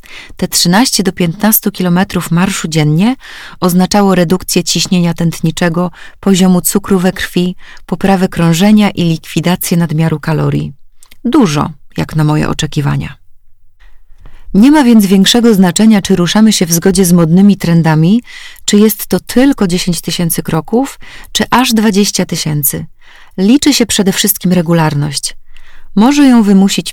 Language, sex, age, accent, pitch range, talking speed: Polish, female, 30-49, native, 170-210 Hz, 130 wpm